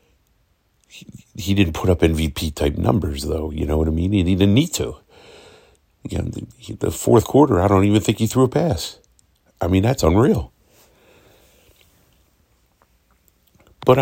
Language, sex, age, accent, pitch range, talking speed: English, male, 50-69, American, 80-105 Hz, 160 wpm